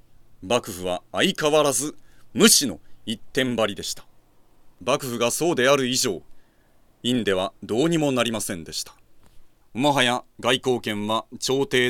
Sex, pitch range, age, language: male, 105-140 Hz, 40-59, Japanese